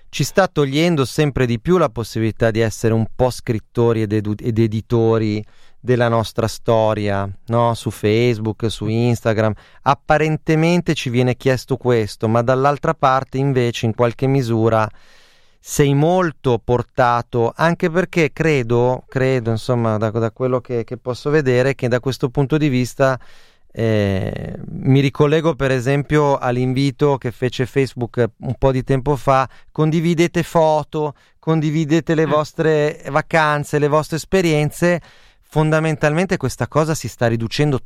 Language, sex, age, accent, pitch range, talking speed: Italian, male, 30-49, native, 115-150 Hz, 135 wpm